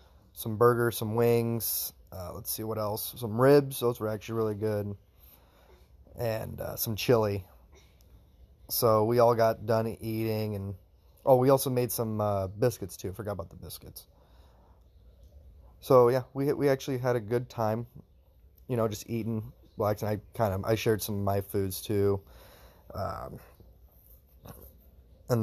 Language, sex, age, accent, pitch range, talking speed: English, male, 20-39, American, 85-115 Hz, 160 wpm